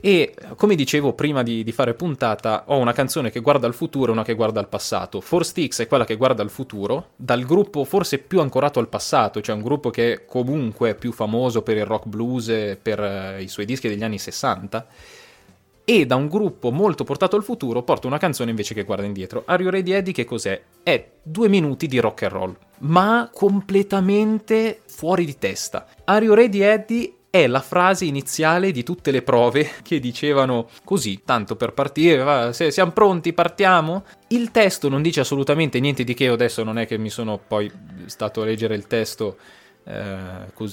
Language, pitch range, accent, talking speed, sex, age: Italian, 110-160 Hz, native, 195 wpm, male, 20-39